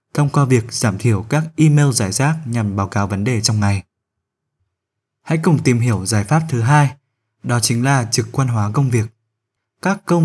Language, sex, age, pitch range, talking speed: Vietnamese, male, 20-39, 115-150 Hz, 200 wpm